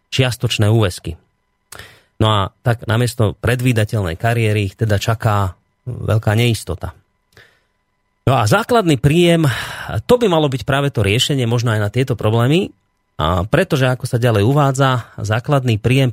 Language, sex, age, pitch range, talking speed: Slovak, male, 30-49, 105-135 Hz, 140 wpm